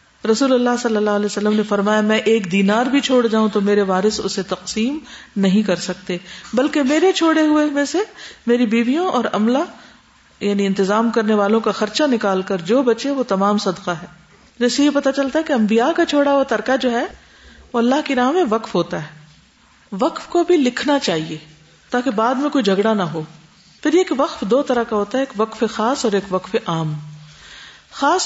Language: Urdu